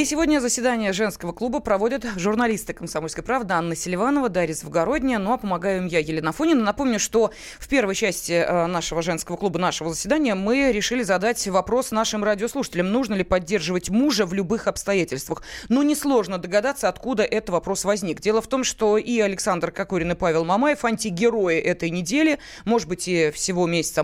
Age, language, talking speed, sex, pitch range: 20-39, Russian, 170 wpm, female, 180-250 Hz